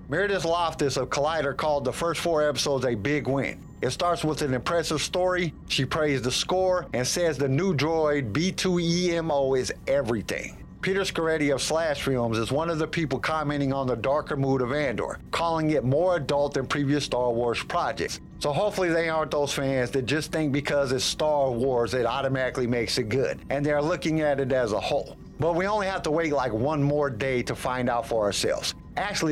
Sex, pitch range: male, 135-165 Hz